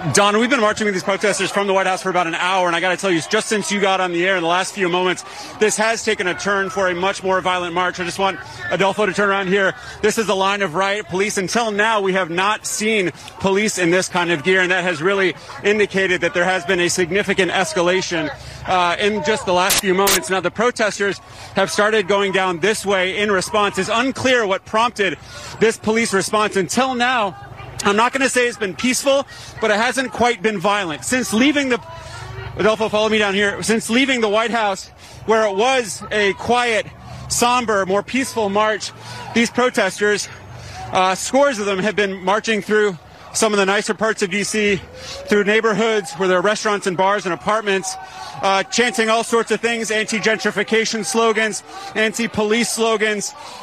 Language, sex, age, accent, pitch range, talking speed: English, male, 30-49, American, 185-220 Hz, 205 wpm